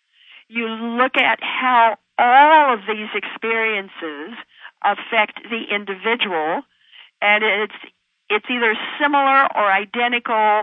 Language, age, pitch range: English, 50-69, 210-275 Hz